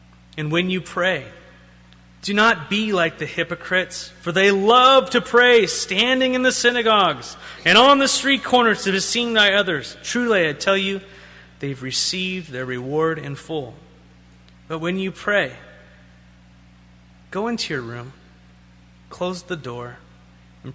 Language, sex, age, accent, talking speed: English, male, 30-49, American, 150 wpm